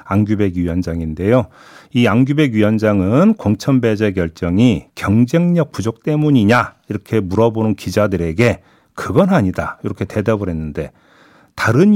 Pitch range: 95-145 Hz